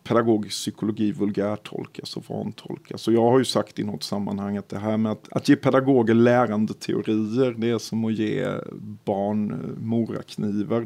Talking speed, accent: 170 wpm, native